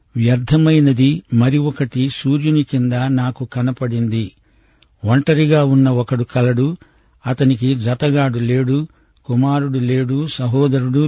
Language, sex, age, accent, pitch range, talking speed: Telugu, male, 60-79, native, 120-145 Hz, 90 wpm